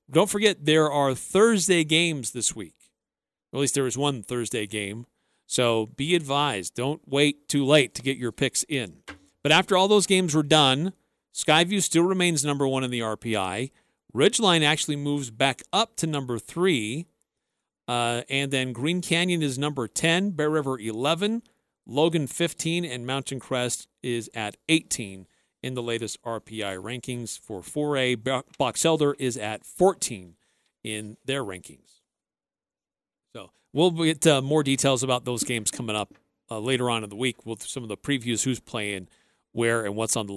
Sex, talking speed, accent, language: male, 170 wpm, American, English